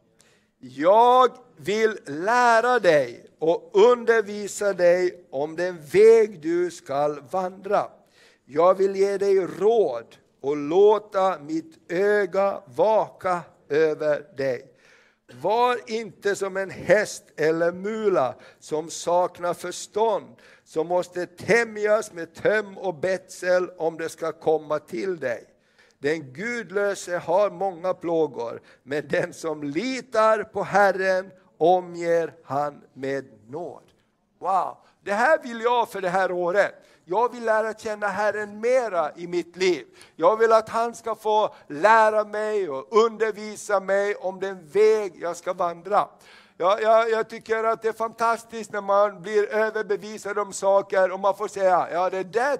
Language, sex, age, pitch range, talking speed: Swedish, male, 60-79, 175-225 Hz, 135 wpm